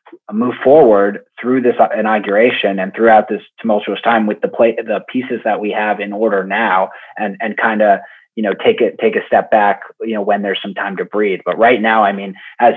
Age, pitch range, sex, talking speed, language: 30-49, 100-115 Hz, male, 220 wpm, English